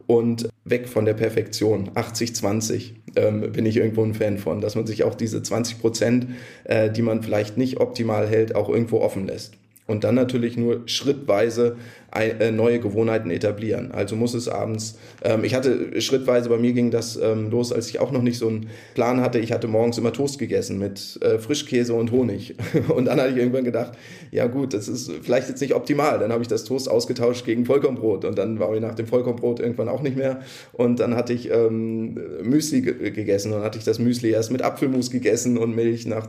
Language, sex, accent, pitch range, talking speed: German, male, German, 110-125 Hz, 205 wpm